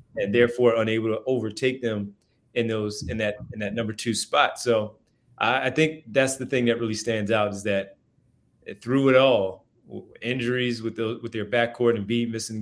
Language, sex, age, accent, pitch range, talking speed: English, male, 30-49, American, 105-120 Hz, 185 wpm